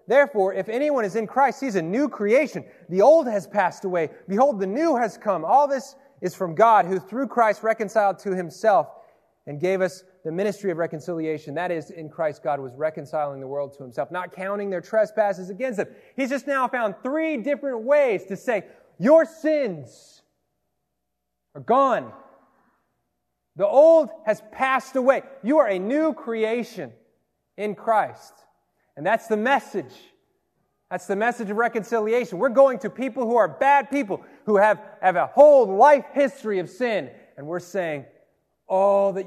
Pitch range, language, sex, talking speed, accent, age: 165-260 Hz, English, male, 170 wpm, American, 30-49